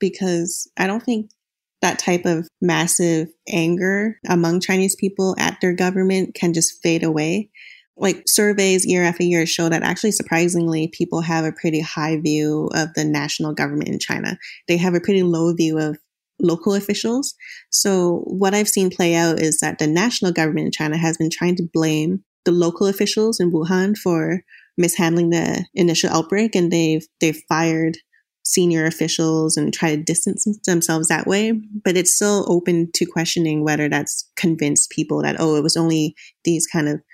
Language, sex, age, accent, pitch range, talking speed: English, female, 20-39, American, 160-185 Hz, 175 wpm